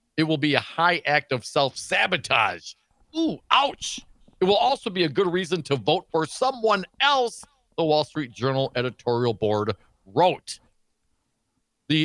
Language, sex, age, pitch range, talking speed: English, male, 50-69, 135-225 Hz, 150 wpm